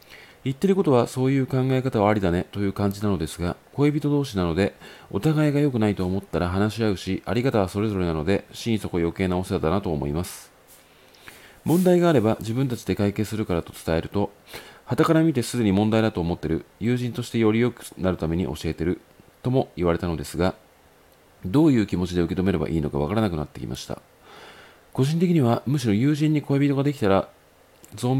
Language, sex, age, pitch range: Japanese, male, 40-59, 90-120 Hz